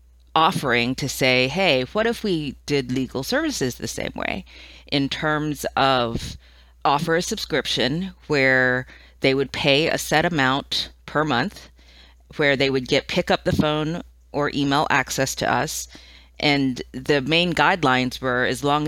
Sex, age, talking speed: female, 30-49, 155 wpm